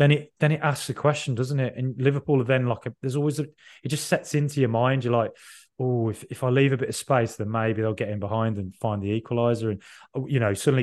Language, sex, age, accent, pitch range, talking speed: English, male, 20-39, British, 110-145 Hz, 265 wpm